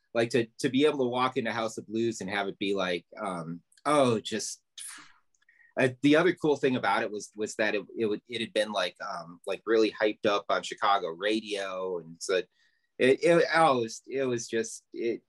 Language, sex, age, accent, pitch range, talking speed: English, male, 30-49, American, 105-135 Hz, 215 wpm